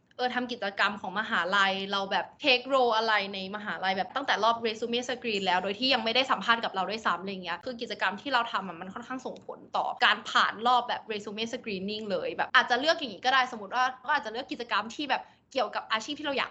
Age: 20-39